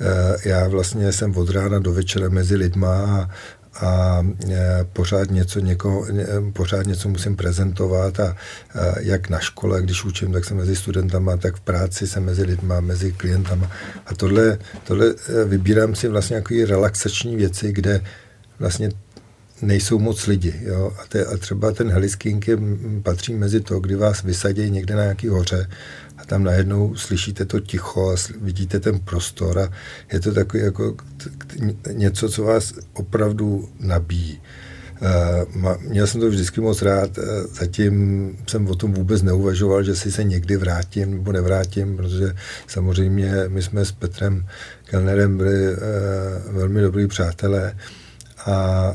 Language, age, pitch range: Czech, 50-69, 95-105 Hz